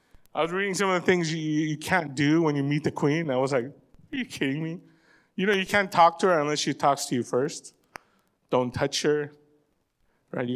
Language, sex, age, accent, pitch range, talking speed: English, male, 30-49, American, 155-235 Hz, 235 wpm